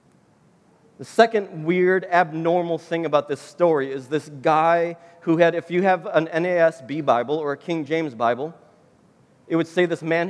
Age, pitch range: 40-59, 145-175 Hz